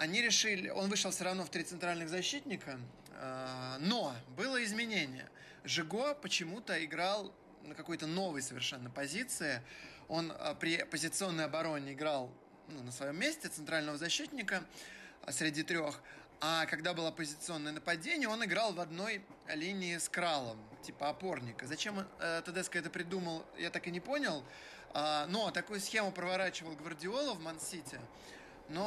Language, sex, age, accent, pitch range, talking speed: Russian, male, 20-39, native, 150-195 Hz, 135 wpm